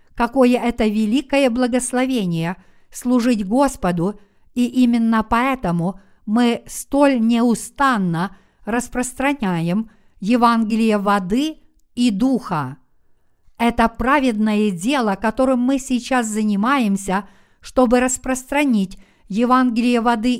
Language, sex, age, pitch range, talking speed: Russian, female, 50-69, 205-255 Hz, 80 wpm